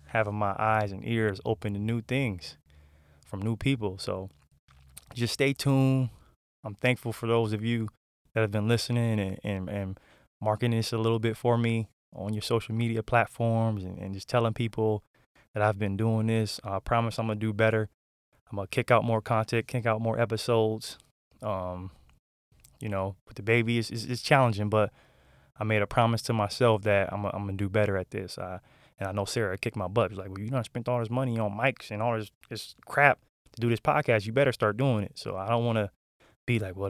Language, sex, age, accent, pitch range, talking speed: English, male, 20-39, American, 105-120 Hz, 220 wpm